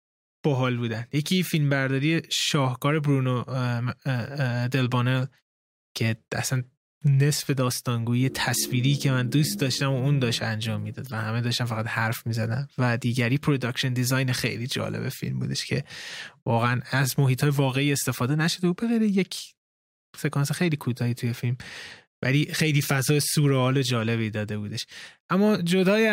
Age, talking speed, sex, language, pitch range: 20-39, 135 wpm, male, Persian, 125-150 Hz